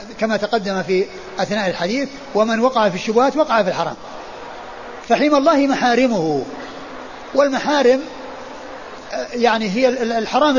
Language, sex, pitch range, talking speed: Arabic, male, 200-250 Hz, 110 wpm